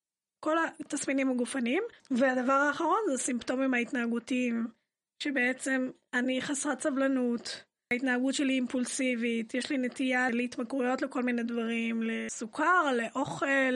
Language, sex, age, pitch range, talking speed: Hebrew, female, 20-39, 245-295 Hz, 105 wpm